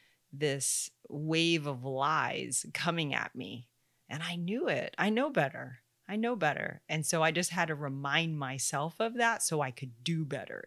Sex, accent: female, American